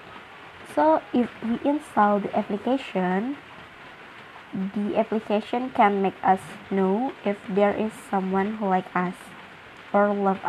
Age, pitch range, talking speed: 20-39, 195-235 Hz, 120 wpm